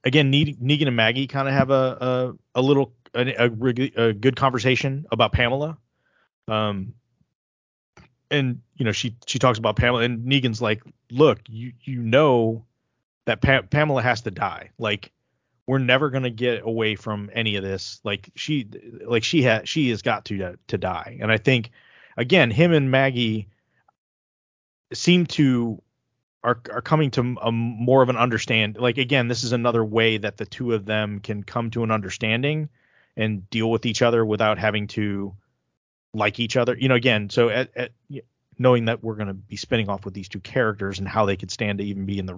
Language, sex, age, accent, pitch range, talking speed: English, male, 30-49, American, 105-130 Hz, 190 wpm